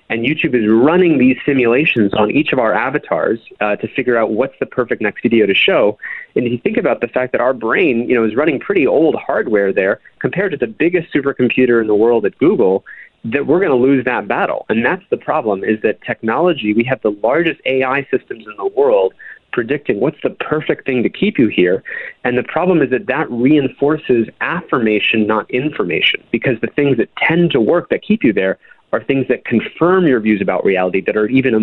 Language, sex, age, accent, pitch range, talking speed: English, male, 30-49, American, 110-160 Hz, 220 wpm